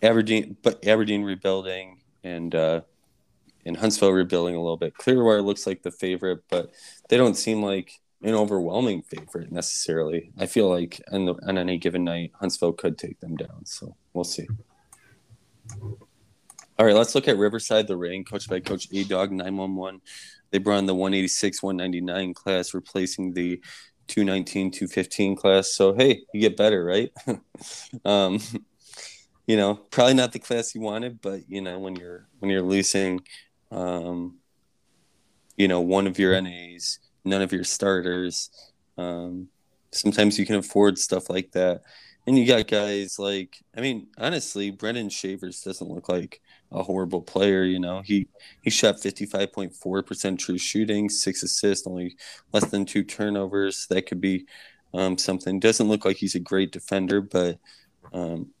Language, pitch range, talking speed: English, 90-100 Hz, 160 wpm